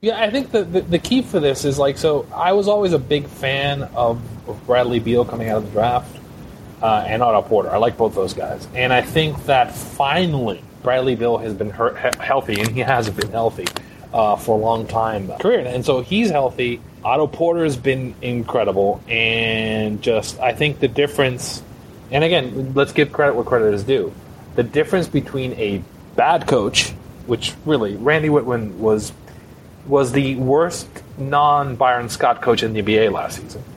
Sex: male